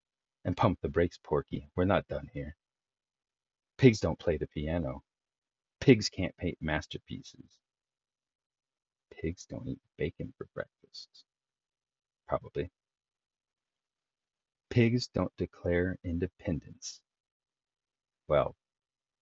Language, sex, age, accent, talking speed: English, male, 40-59, American, 95 wpm